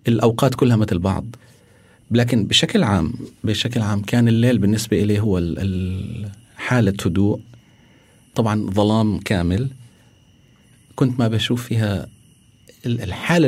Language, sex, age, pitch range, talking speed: Arabic, male, 40-59, 100-120 Hz, 105 wpm